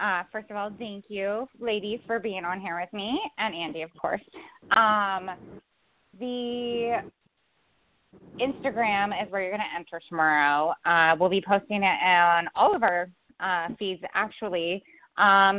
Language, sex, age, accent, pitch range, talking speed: English, female, 20-39, American, 190-235 Hz, 155 wpm